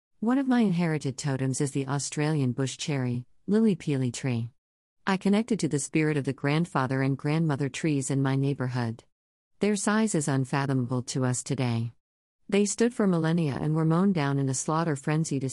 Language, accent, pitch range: English, American, 130-160 Hz